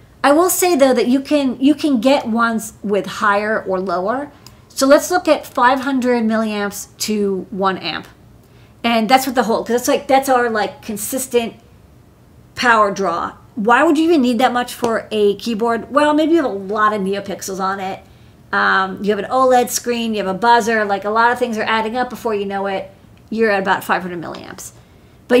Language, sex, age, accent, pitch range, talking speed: English, female, 40-59, American, 200-255 Hz, 205 wpm